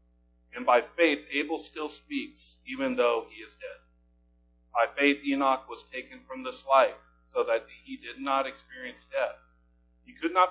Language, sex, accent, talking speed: English, male, American, 165 wpm